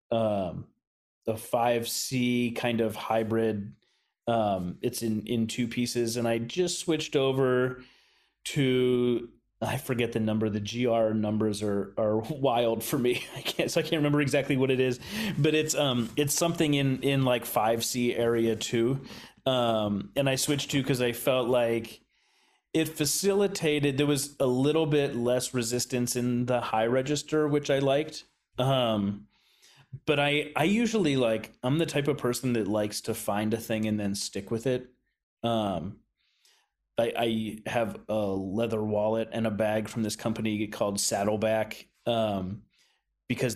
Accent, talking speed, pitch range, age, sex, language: American, 160 wpm, 110-135 Hz, 30-49, male, English